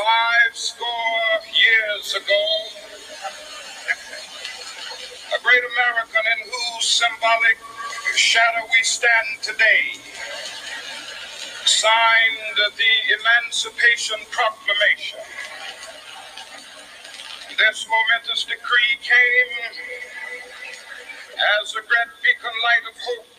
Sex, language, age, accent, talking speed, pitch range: male, English, 50-69, American, 75 wpm, 225-315 Hz